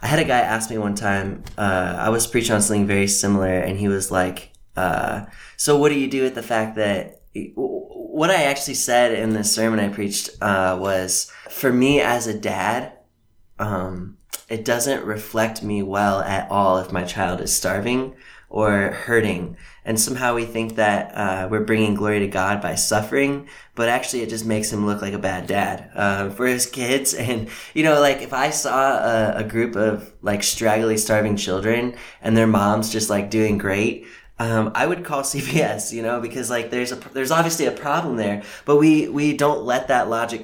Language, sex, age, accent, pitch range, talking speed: English, male, 20-39, American, 105-130 Hz, 200 wpm